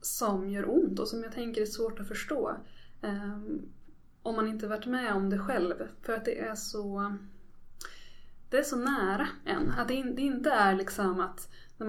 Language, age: Swedish, 20-39